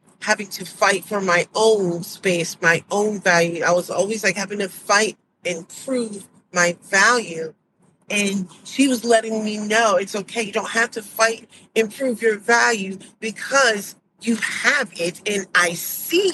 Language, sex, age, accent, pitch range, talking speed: English, female, 40-59, American, 180-225 Hz, 165 wpm